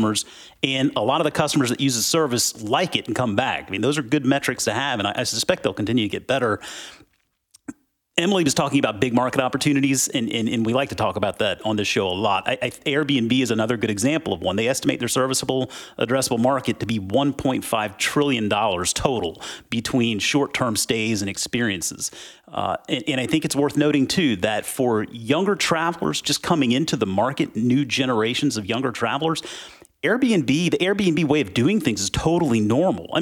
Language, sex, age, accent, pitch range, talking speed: English, male, 40-59, American, 115-145 Hz, 195 wpm